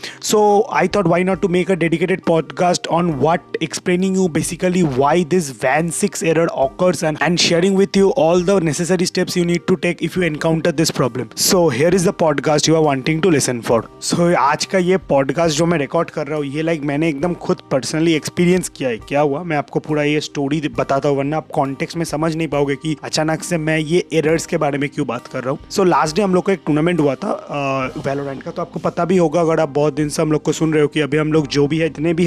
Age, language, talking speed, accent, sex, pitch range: 30-49, Hindi, 245 wpm, native, male, 150-185 Hz